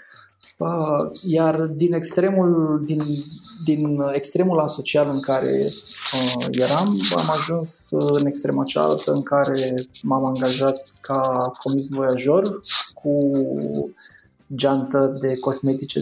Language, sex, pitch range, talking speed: Romanian, male, 125-155 Hz, 100 wpm